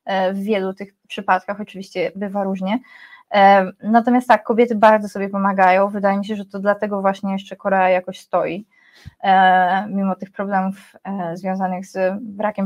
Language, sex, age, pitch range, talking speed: Polish, female, 20-39, 195-235 Hz, 140 wpm